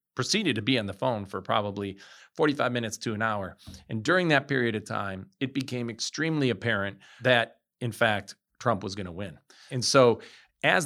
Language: English